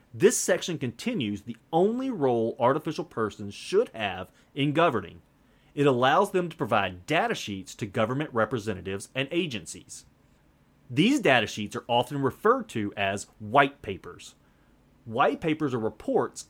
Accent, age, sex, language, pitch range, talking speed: American, 30-49, male, English, 110-155 Hz, 140 wpm